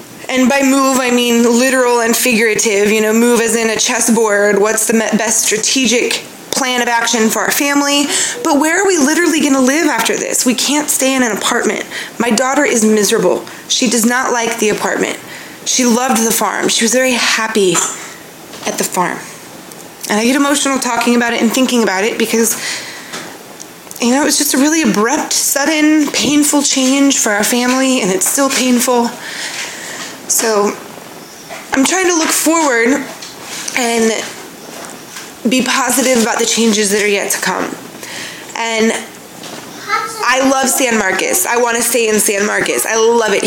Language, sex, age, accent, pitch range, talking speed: English, female, 20-39, American, 225-275 Hz, 170 wpm